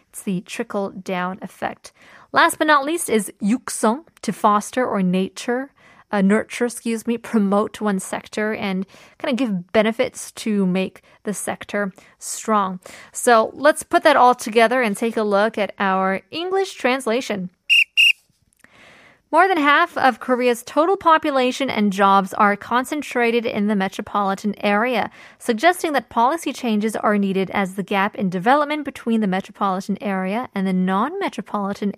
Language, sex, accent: Korean, female, American